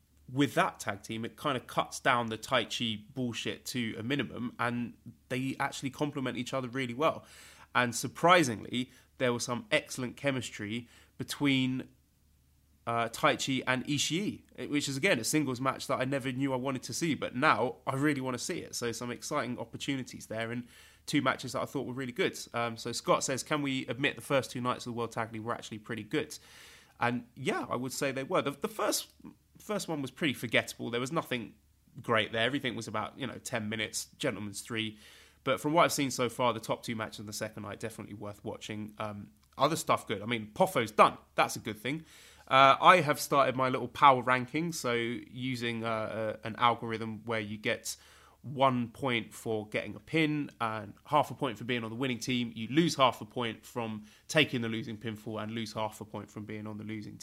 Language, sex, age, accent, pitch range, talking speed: English, male, 20-39, British, 110-135 Hz, 215 wpm